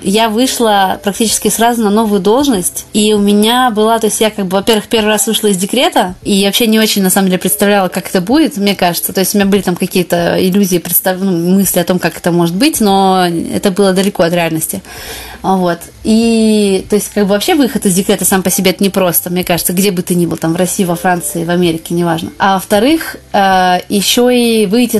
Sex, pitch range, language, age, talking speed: female, 190-225 Hz, Russian, 20-39, 225 wpm